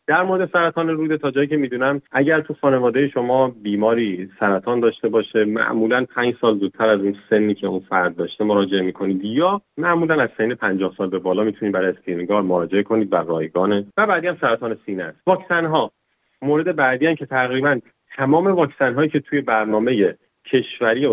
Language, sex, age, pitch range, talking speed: Persian, male, 30-49, 100-140 Hz, 175 wpm